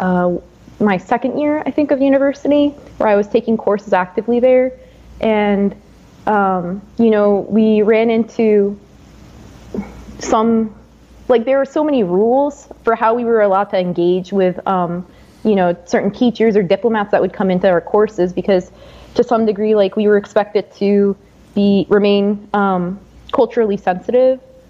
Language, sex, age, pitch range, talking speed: English, female, 20-39, 190-220 Hz, 155 wpm